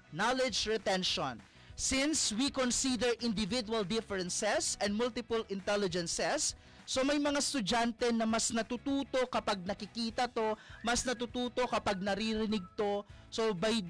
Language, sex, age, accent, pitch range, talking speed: Filipino, male, 20-39, native, 195-235 Hz, 115 wpm